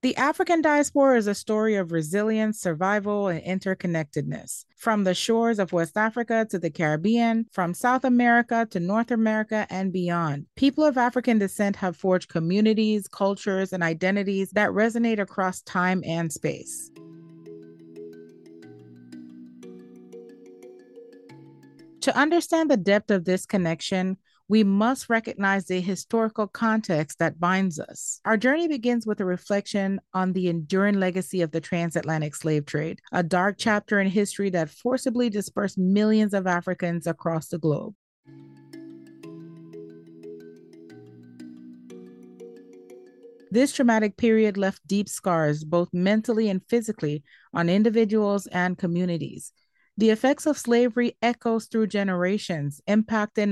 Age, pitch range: 40-59, 160-220 Hz